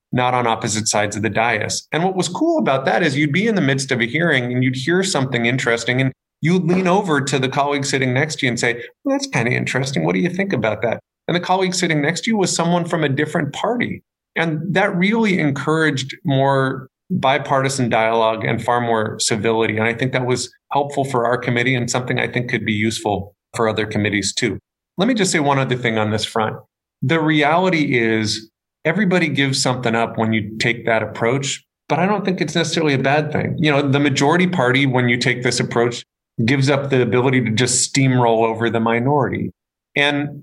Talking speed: 215 wpm